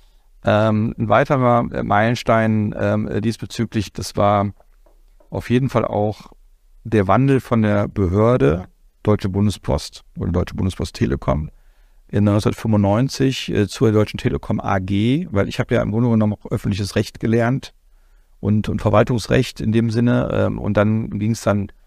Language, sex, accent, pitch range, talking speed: English, male, German, 100-115 Hz, 145 wpm